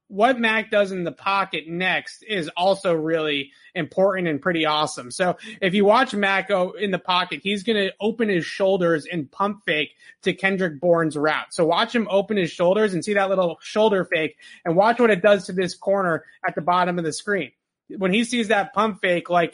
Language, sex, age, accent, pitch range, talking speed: English, male, 30-49, American, 170-205 Hz, 210 wpm